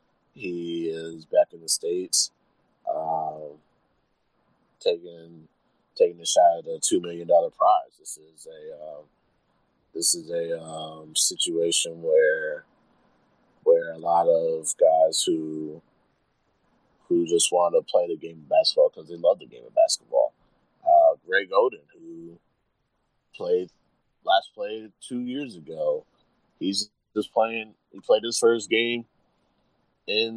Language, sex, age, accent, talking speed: English, male, 30-49, American, 135 wpm